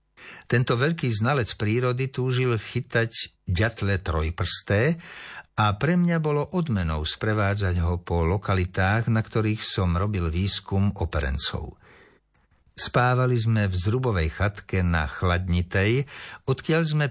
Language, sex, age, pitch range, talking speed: Slovak, male, 60-79, 90-120 Hz, 110 wpm